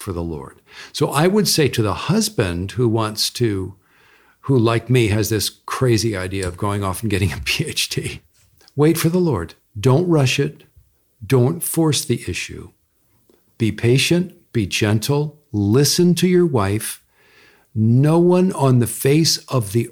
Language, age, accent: English, 50-69, American